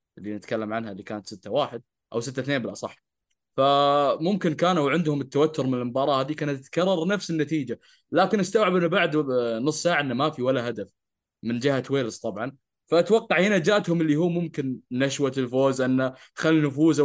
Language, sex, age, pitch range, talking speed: Arabic, male, 20-39, 130-165 Hz, 170 wpm